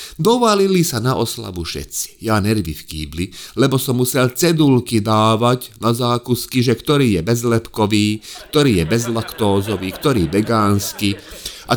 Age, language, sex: 30-49, Slovak, male